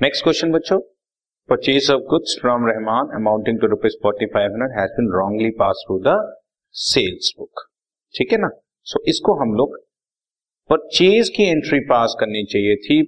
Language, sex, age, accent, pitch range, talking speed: Hindi, male, 30-49, native, 125-175 Hz, 130 wpm